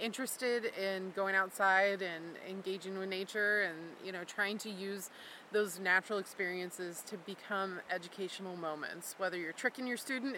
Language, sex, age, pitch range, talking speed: English, female, 20-39, 180-205 Hz, 150 wpm